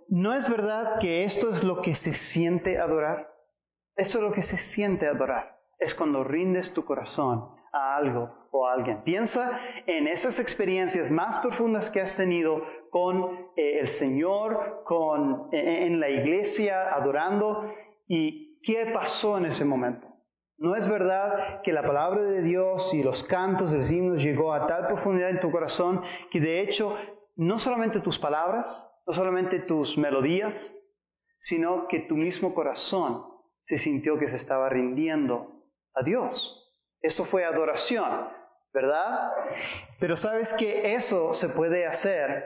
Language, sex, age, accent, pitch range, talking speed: Spanish, male, 40-59, Mexican, 150-210 Hz, 155 wpm